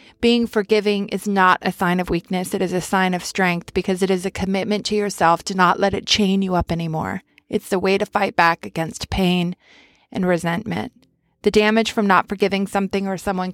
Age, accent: 30-49, American